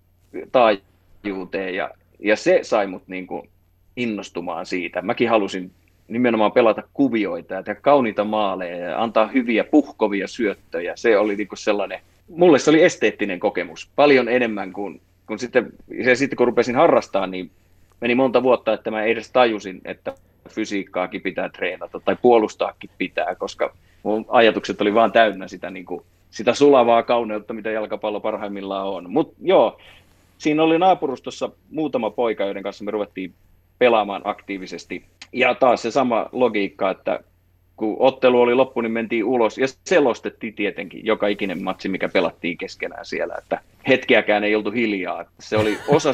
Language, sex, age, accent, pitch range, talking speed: Finnish, male, 30-49, native, 95-120 Hz, 150 wpm